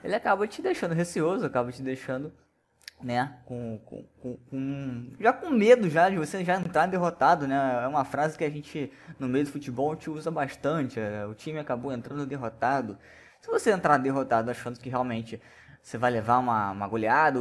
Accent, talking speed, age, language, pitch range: Brazilian, 190 wpm, 10-29, Portuguese, 120-165 Hz